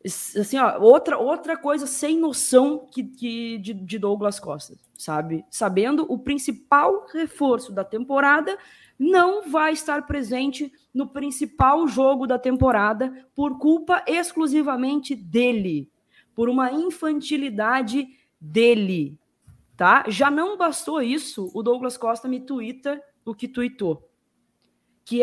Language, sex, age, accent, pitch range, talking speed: Portuguese, female, 20-39, Brazilian, 205-280 Hz, 120 wpm